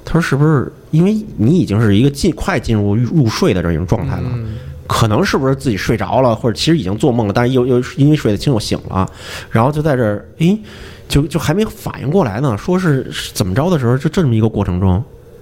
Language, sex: Chinese, male